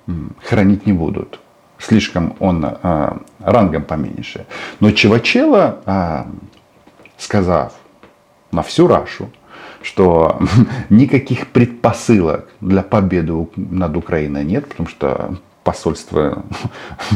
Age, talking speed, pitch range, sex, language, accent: 50-69, 85 wpm, 90-120 Hz, male, Russian, native